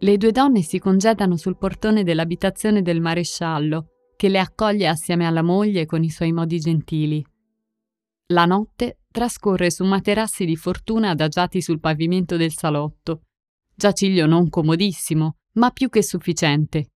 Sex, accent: female, native